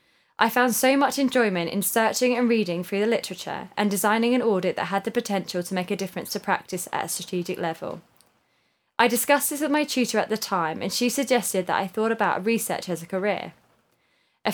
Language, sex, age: English, female, 10-29